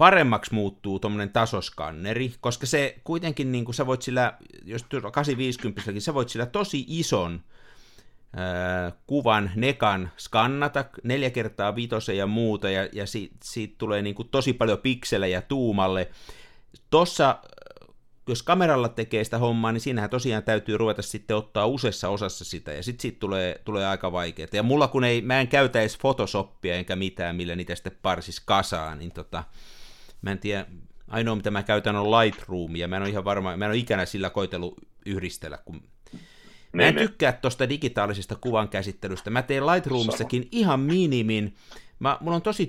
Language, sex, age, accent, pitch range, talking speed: Finnish, male, 50-69, native, 95-125 Hz, 155 wpm